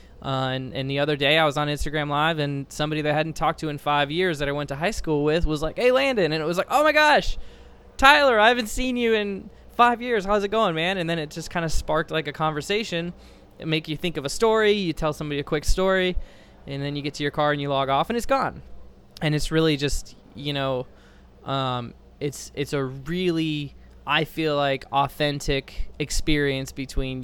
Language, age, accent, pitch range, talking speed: English, 20-39, American, 125-155 Hz, 230 wpm